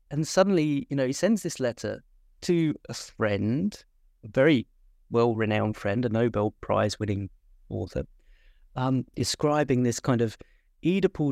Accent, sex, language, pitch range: British, male, English, 120-155 Hz